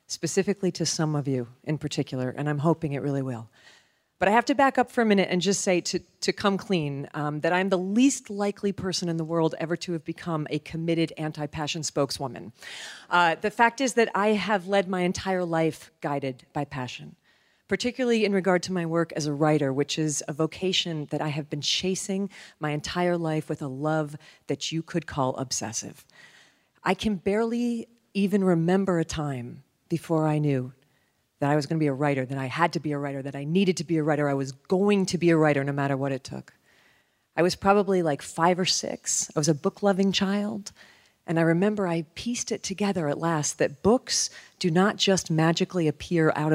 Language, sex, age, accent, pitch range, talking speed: English, female, 40-59, American, 150-195 Hz, 210 wpm